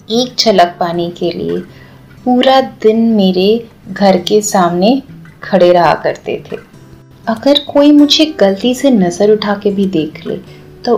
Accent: native